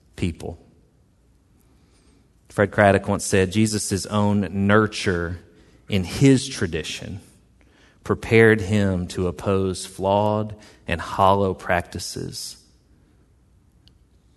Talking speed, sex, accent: 80 wpm, male, American